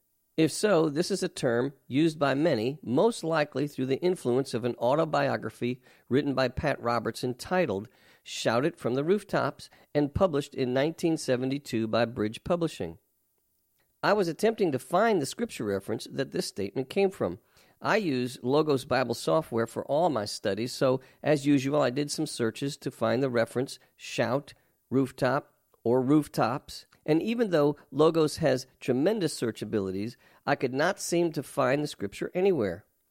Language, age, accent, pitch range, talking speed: English, 50-69, American, 120-165 Hz, 160 wpm